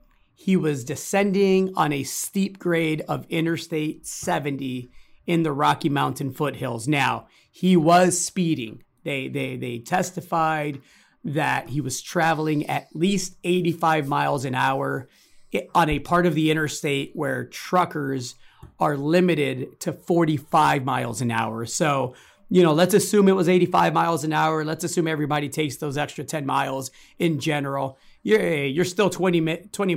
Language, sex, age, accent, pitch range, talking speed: English, male, 40-59, American, 140-180 Hz, 150 wpm